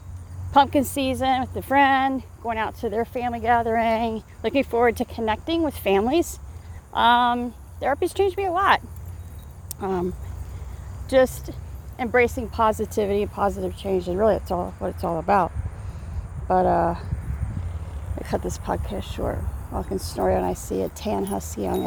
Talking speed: 150 wpm